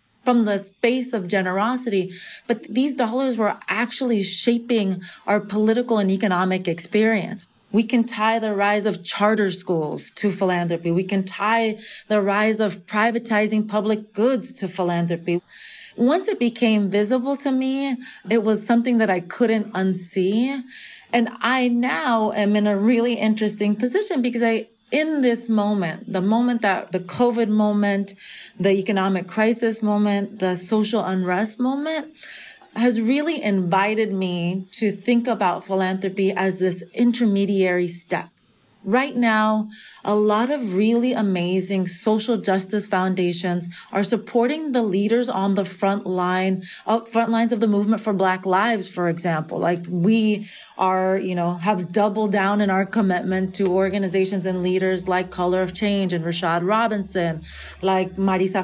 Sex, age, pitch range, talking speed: female, 30-49, 185-230 Hz, 145 wpm